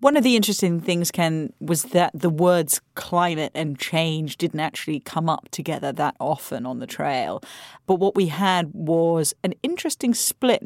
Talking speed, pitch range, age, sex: 175 wpm, 155-185 Hz, 30-49, female